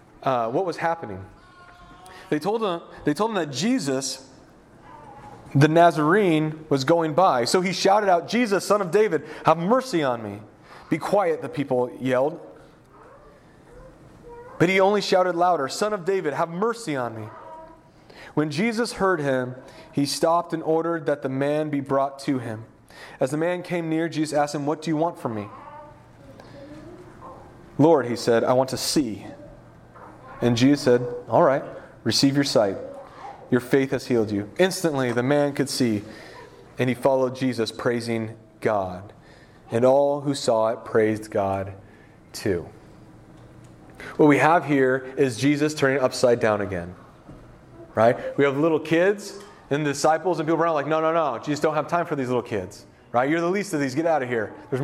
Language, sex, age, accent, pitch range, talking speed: English, male, 30-49, American, 125-170 Hz, 170 wpm